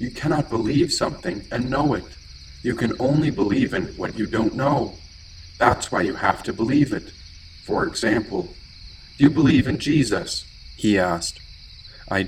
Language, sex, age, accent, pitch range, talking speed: English, male, 50-69, American, 90-130 Hz, 160 wpm